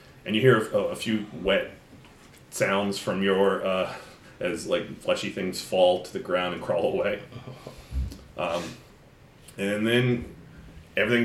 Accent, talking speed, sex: American, 135 wpm, male